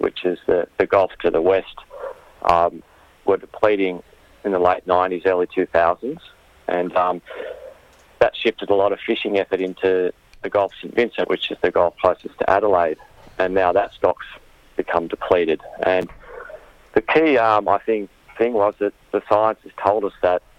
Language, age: English, 40-59